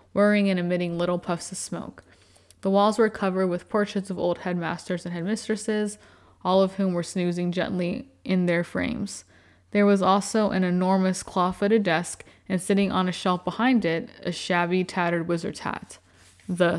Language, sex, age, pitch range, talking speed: English, female, 20-39, 170-210 Hz, 170 wpm